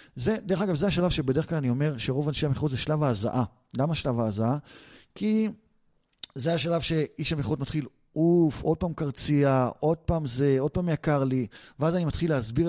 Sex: male